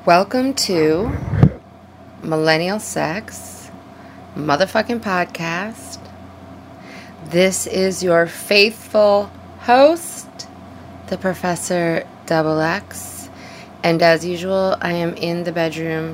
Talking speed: 85 wpm